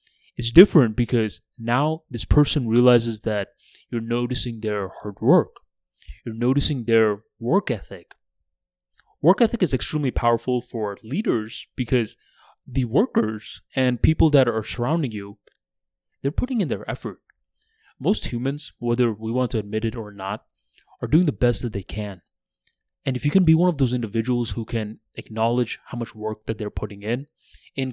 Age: 20-39